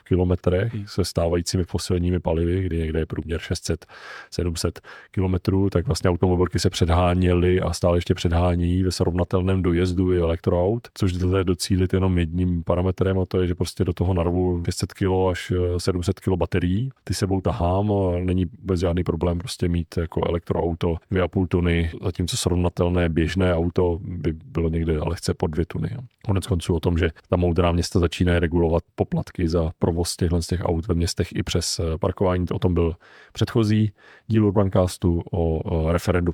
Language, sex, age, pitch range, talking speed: Czech, male, 30-49, 85-100 Hz, 165 wpm